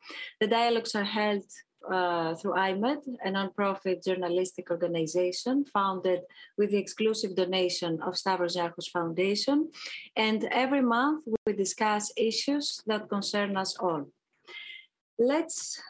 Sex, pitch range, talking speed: female, 185-240 Hz, 115 wpm